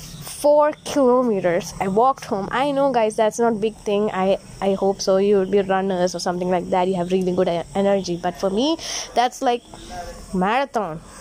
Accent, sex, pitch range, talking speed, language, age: Indian, female, 200-265 Hz, 195 wpm, English, 20-39